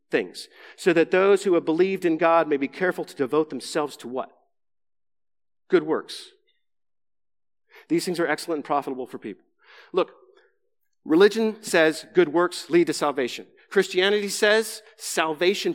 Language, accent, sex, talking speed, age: English, American, male, 145 wpm, 40-59